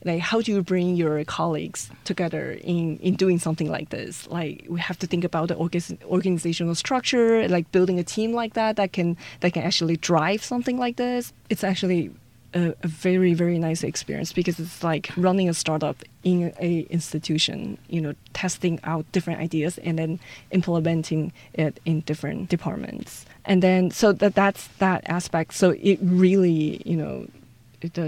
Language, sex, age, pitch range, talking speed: English, female, 20-39, 165-200 Hz, 175 wpm